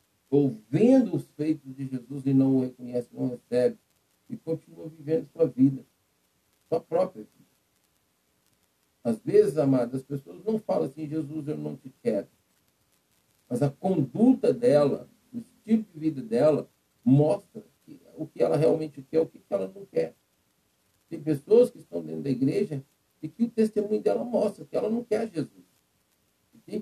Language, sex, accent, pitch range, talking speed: Portuguese, male, Brazilian, 130-180 Hz, 160 wpm